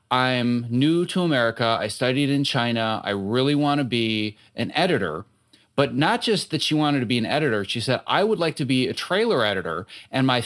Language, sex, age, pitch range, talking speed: English, male, 30-49, 115-150 Hz, 210 wpm